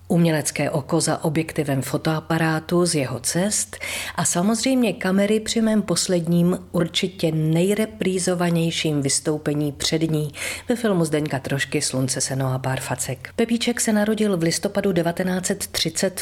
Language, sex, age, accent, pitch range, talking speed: Czech, female, 40-59, native, 145-195 Hz, 125 wpm